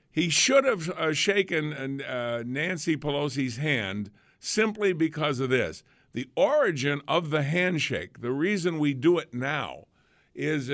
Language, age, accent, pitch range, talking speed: English, 50-69, American, 125-155 Hz, 130 wpm